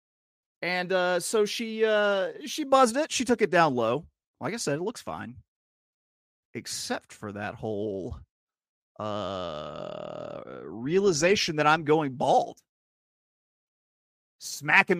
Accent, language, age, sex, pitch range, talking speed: American, English, 30-49, male, 120-170 Hz, 120 wpm